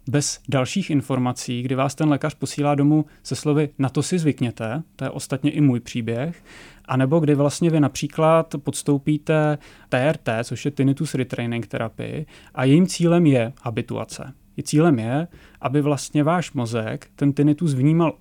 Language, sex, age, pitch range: Czech, male, 30-49, 125-150 Hz